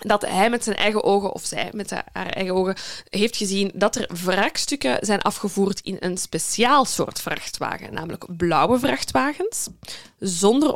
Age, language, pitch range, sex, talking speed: 20-39, Dutch, 185-255 Hz, female, 155 wpm